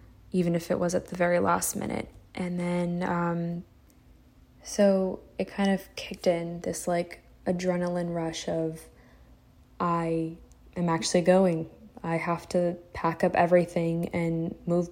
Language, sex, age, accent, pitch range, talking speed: English, female, 10-29, American, 165-180 Hz, 140 wpm